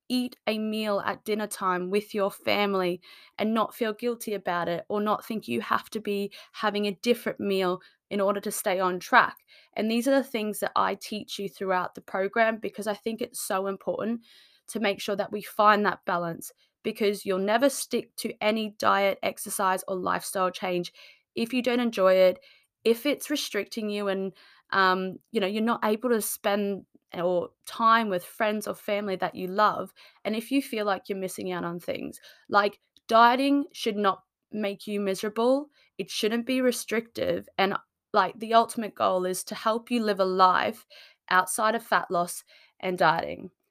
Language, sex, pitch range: English, female, 195-230 Hz